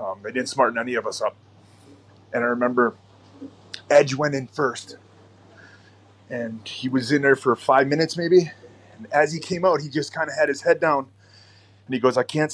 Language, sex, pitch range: English, male, 105-135 Hz